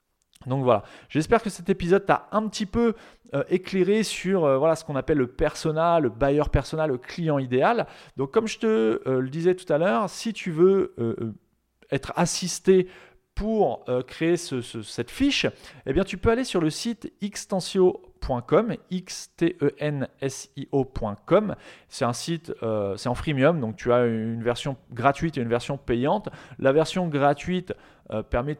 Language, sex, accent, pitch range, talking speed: French, male, French, 135-185 Hz, 170 wpm